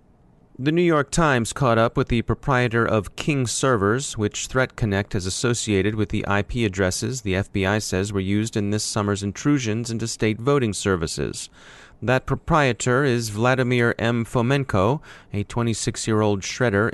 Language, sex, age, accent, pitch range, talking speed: English, male, 30-49, American, 100-125 Hz, 150 wpm